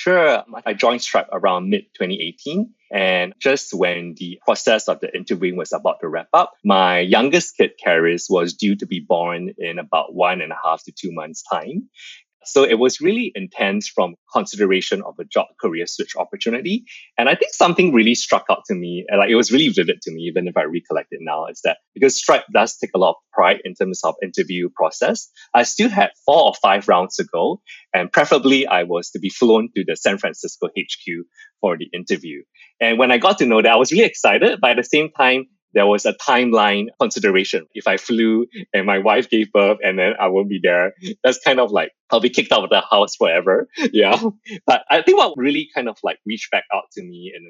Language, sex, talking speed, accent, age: English, male, 220 wpm, Malaysian, 20-39